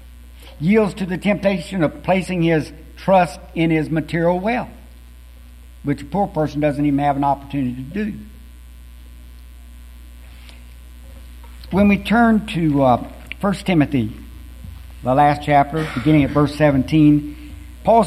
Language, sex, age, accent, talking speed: English, male, 60-79, American, 125 wpm